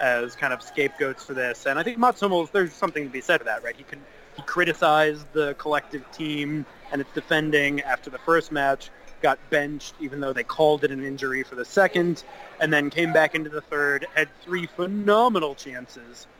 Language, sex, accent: English, male, American